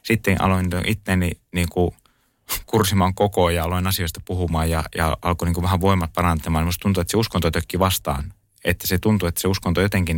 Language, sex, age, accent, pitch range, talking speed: Finnish, male, 30-49, native, 85-105 Hz, 175 wpm